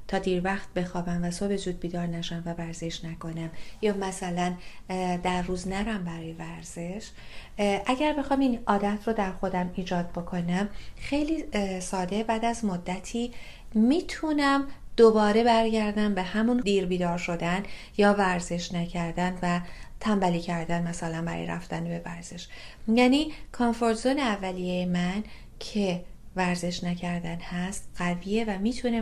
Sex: female